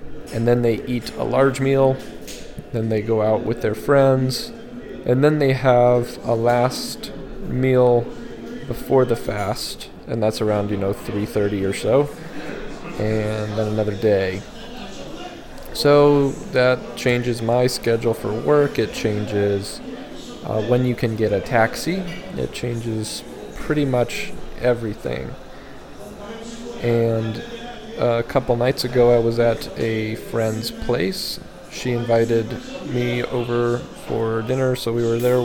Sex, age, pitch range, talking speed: male, 20-39, 110-130 Hz, 135 wpm